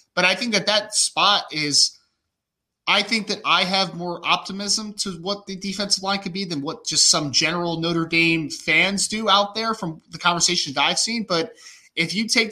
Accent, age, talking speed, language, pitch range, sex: American, 20-39, 200 wpm, English, 140-195 Hz, male